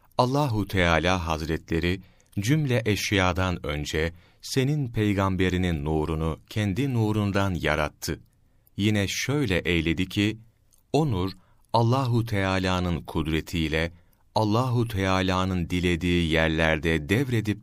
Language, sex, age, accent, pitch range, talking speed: Turkish, male, 40-59, native, 90-115 Hz, 80 wpm